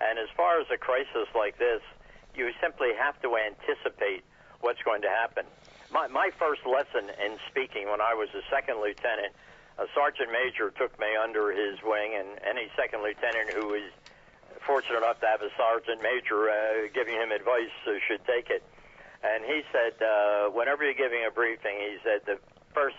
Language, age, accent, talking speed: English, 60-79, American, 185 wpm